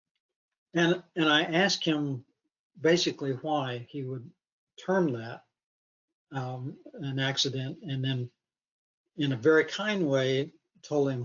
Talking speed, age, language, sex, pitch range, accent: 125 wpm, 60-79, English, male, 130-155 Hz, American